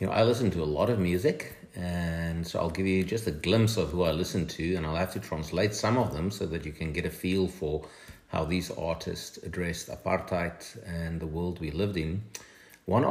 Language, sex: English, male